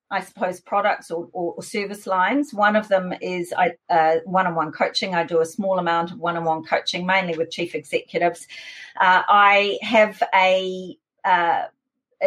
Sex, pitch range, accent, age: female, 175-235 Hz, Australian, 40-59